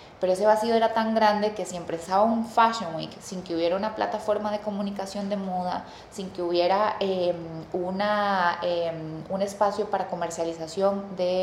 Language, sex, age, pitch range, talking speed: English, female, 20-39, 180-220 Hz, 170 wpm